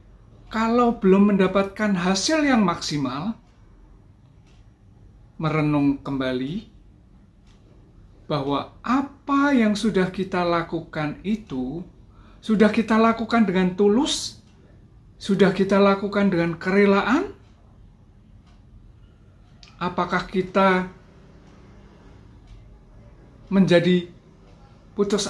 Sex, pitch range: male, 130-205 Hz